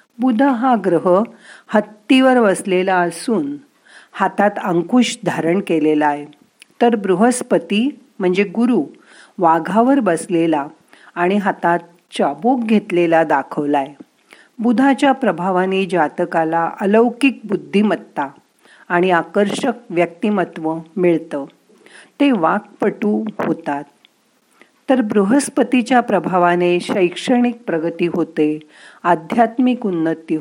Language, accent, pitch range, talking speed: Marathi, native, 175-240 Hz, 85 wpm